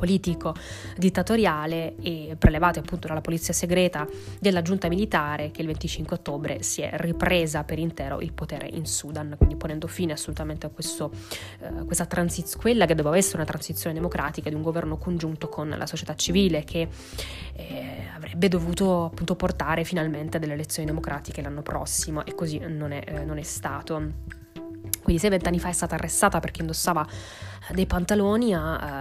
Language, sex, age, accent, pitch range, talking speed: Italian, female, 20-39, native, 150-180 Hz, 170 wpm